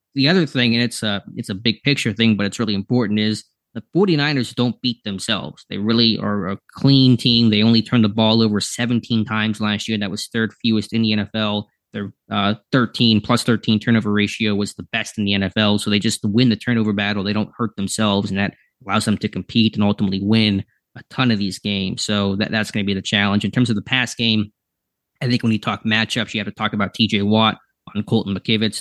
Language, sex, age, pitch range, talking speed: English, male, 20-39, 100-115 Hz, 230 wpm